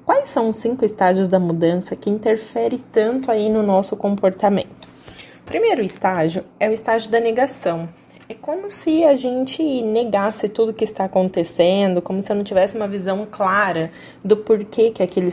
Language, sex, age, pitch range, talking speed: English, female, 20-39, 190-250 Hz, 170 wpm